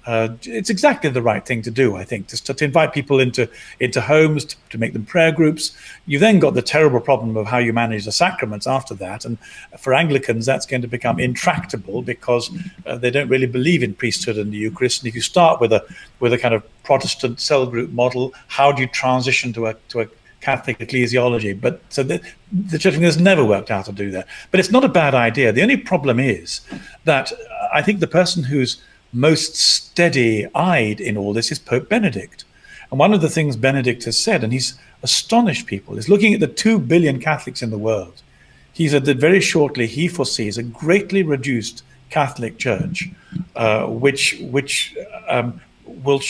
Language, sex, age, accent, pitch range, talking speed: English, male, 50-69, British, 115-160 Hz, 200 wpm